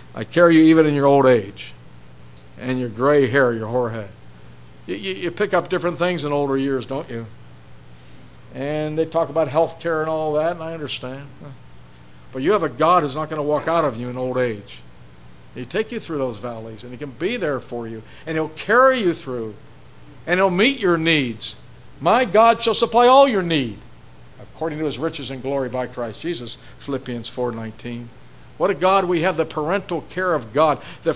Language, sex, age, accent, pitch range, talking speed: English, male, 60-79, American, 110-165 Hz, 205 wpm